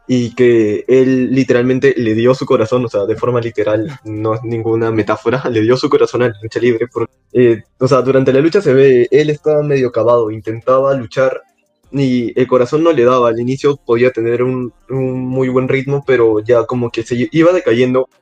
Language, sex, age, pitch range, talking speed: Spanish, male, 20-39, 115-130 Hz, 205 wpm